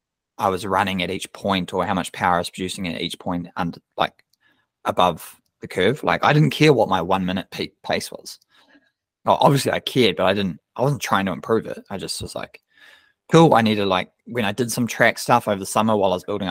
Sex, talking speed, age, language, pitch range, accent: male, 235 wpm, 20-39, English, 95-130 Hz, Australian